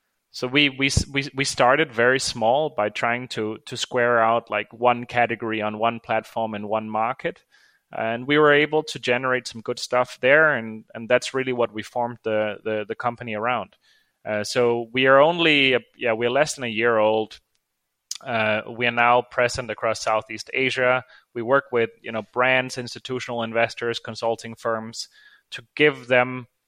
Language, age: English, 30-49